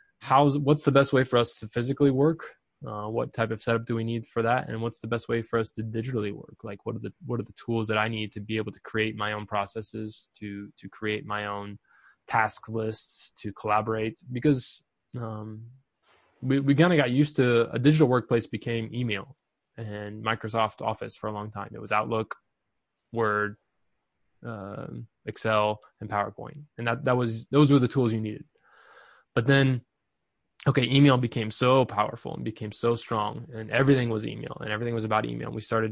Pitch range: 110-125 Hz